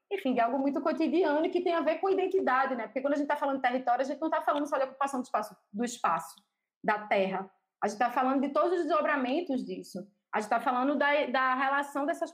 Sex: female